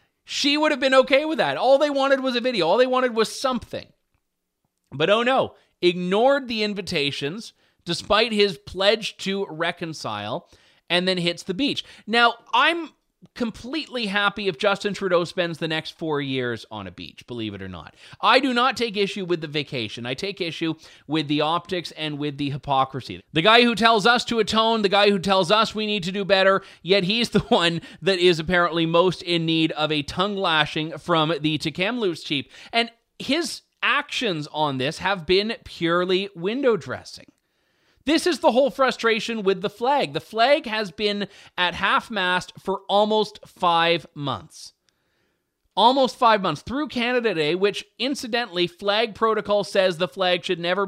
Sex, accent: male, American